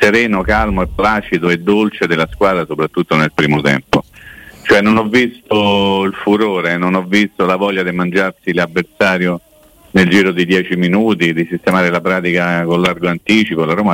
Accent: native